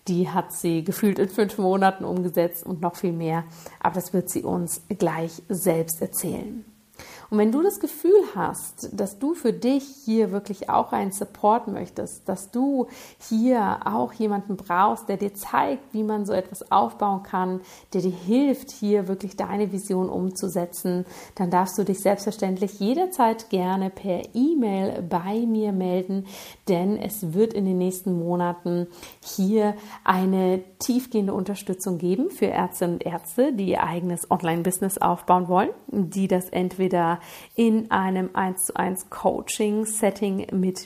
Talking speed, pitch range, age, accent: 155 wpm, 180-215 Hz, 50-69, German